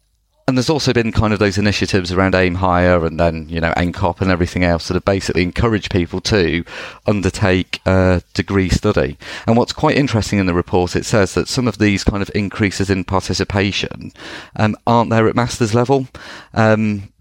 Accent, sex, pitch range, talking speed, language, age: British, male, 90-105 Hz, 195 wpm, English, 30-49